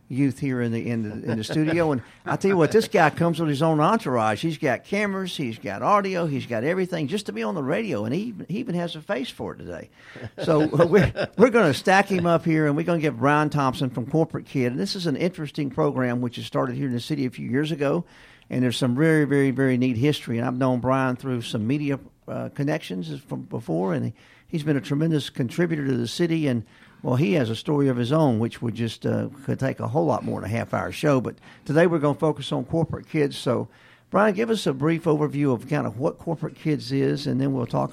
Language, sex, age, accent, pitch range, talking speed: English, male, 50-69, American, 125-160 Hz, 250 wpm